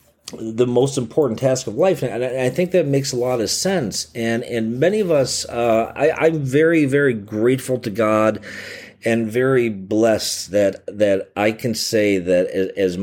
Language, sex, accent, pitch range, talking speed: English, male, American, 90-120 Hz, 175 wpm